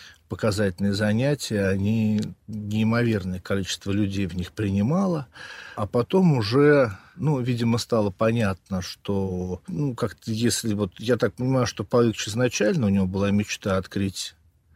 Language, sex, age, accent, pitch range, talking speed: Russian, male, 50-69, native, 100-120 Hz, 130 wpm